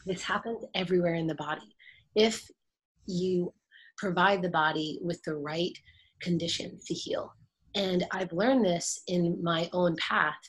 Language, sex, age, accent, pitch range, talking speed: English, female, 30-49, American, 160-185 Hz, 145 wpm